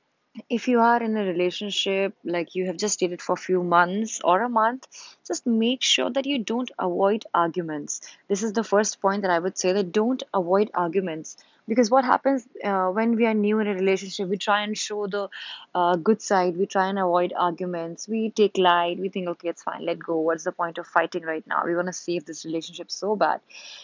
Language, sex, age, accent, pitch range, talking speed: English, female, 20-39, Indian, 185-235 Hz, 220 wpm